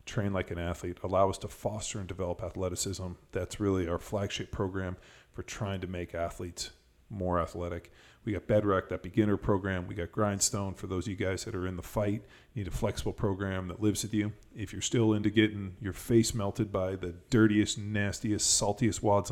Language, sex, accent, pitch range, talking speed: English, male, American, 95-110 Hz, 200 wpm